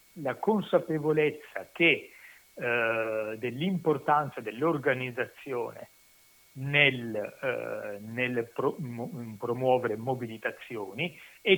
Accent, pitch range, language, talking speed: native, 125-190 Hz, Italian, 50 wpm